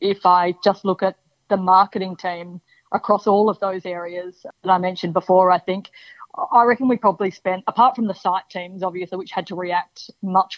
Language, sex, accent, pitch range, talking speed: English, female, Australian, 180-195 Hz, 200 wpm